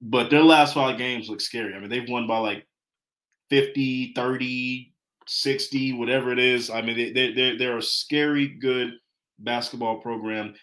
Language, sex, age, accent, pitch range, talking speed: English, male, 20-39, American, 110-135 Hz, 160 wpm